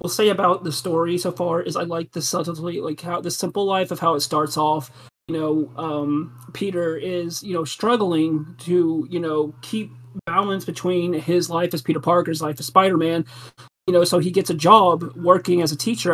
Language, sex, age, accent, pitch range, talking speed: English, male, 30-49, American, 155-180 Hz, 200 wpm